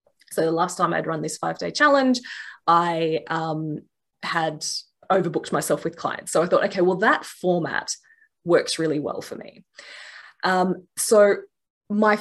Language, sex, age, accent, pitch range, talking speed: English, female, 20-39, Australian, 165-225 Hz, 150 wpm